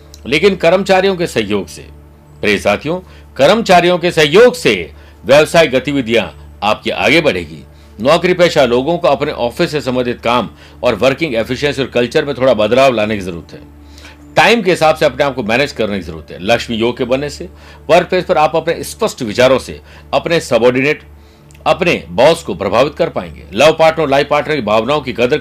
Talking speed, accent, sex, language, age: 185 wpm, native, male, Hindi, 60-79